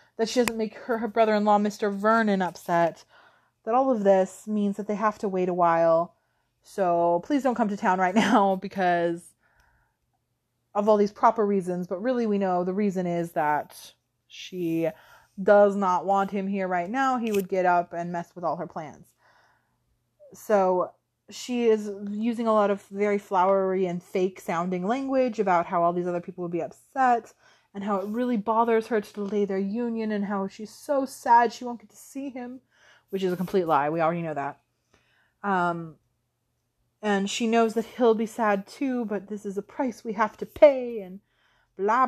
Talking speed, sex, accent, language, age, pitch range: 190 wpm, female, American, English, 20-39, 175-220 Hz